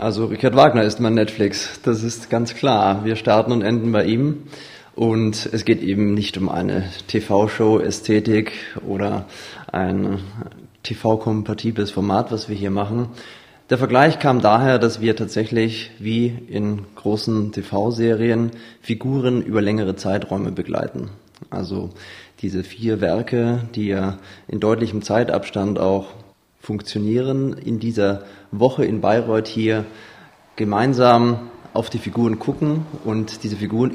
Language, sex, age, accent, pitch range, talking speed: German, male, 20-39, German, 100-120 Hz, 130 wpm